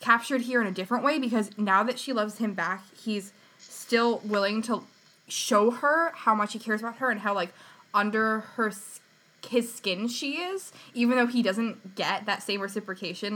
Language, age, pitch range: English, 20-39, 190-225 Hz